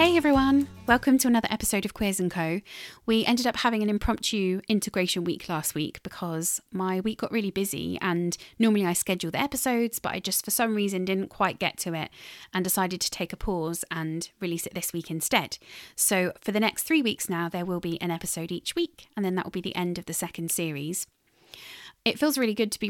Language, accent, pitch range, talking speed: English, British, 170-205 Hz, 225 wpm